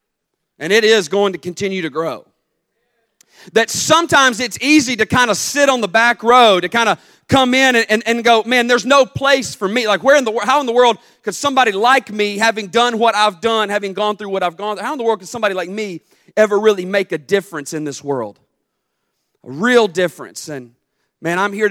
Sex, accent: male, American